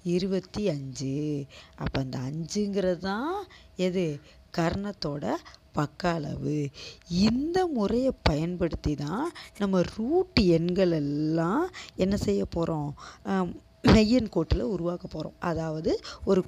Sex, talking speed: female, 100 wpm